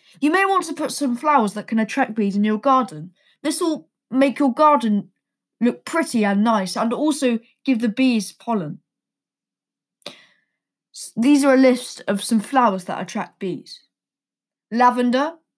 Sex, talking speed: female, 160 wpm